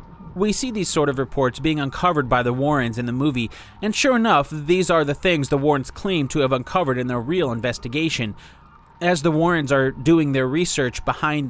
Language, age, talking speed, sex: English, 30-49, 205 wpm, male